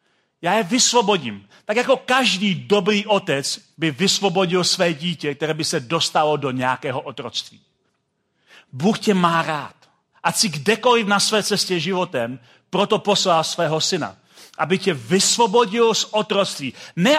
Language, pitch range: Czech, 165-220 Hz